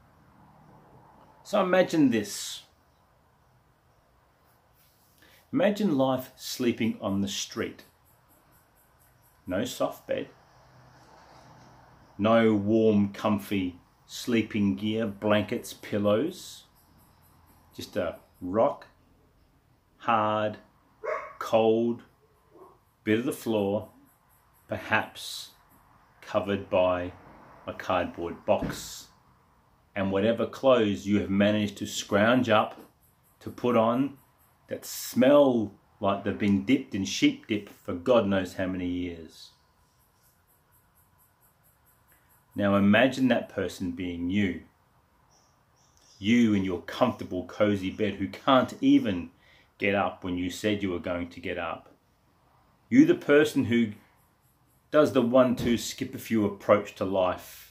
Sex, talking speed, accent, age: male, 100 wpm, Australian, 40-59